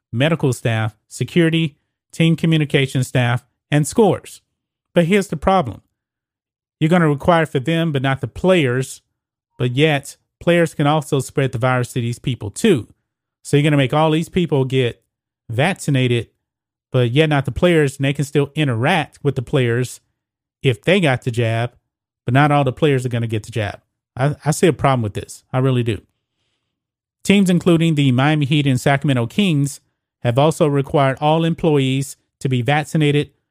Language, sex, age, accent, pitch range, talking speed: English, male, 30-49, American, 120-155 Hz, 175 wpm